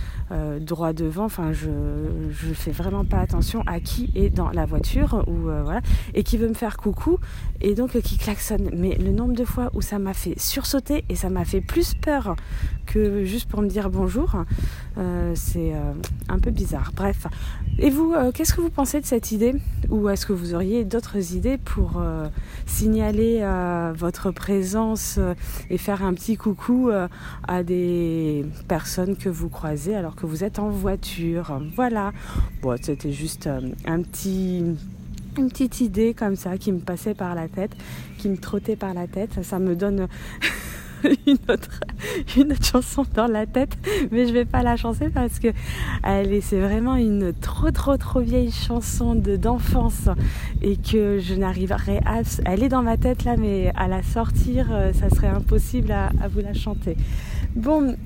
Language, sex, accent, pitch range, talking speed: French, female, French, 160-240 Hz, 185 wpm